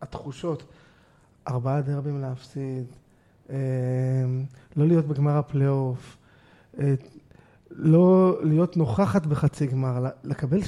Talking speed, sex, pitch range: 80 wpm, male, 145-165 Hz